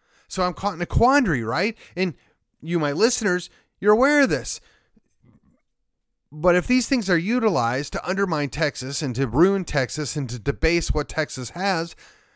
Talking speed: 165 wpm